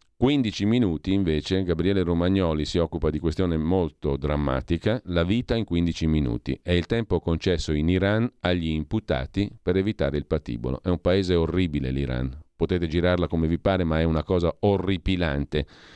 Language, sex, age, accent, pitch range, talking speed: Italian, male, 40-59, native, 80-100 Hz, 160 wpm